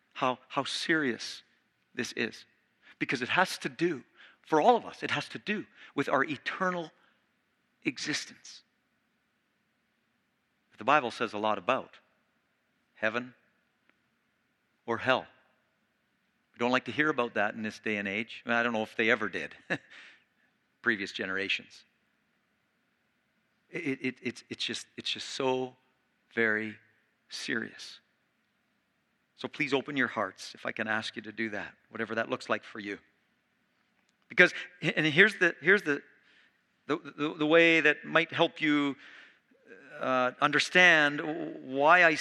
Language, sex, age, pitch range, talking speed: English, male, 50-69, 120-170 Hz, 140 wpm